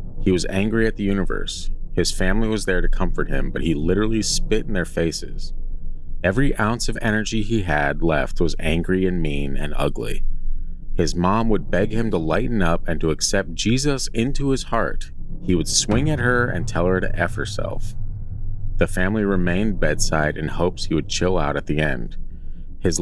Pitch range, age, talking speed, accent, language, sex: 80-105 Hz, 30-49, 190 wpm, American, English, male